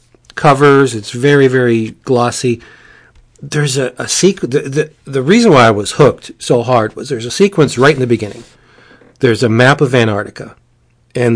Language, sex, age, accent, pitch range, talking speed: English, male, 40-59, American, 115-145 Hz, 175 wpm